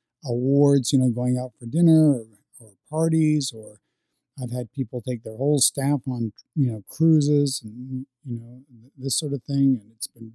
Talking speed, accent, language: 185 wpm, American, English